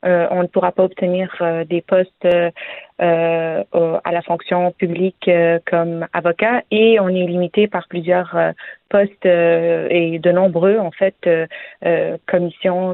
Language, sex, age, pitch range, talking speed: French, female, 30-49, 170-195 Hz, 160 wpm